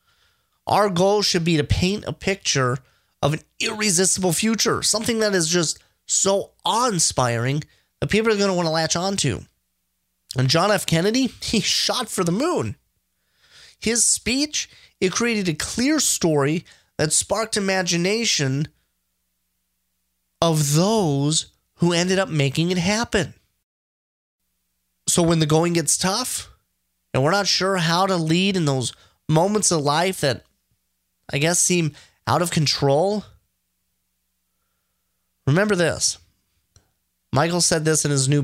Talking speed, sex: 135 wpm, male